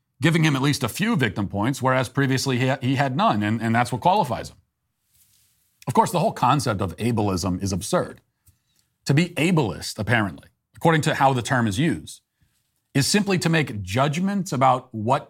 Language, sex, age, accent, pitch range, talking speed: English, male, 40-59, American, 115-150 Hz, 185 wpm